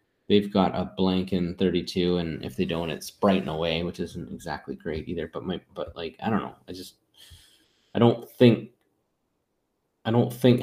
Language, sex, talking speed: English, male, 185 wpm